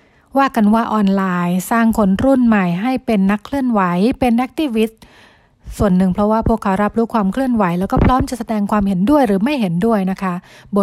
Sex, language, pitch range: female, Thai, 190-225 Hz